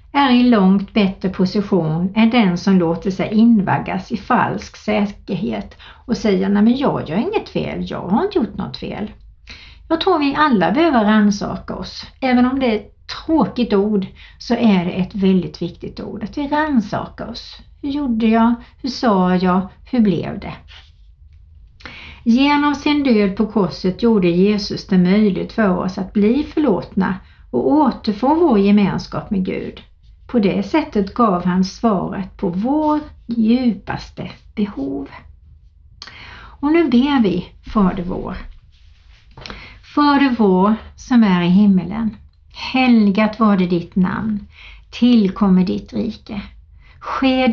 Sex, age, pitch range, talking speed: female, 60-79, 185-245 Hz, 145 wpm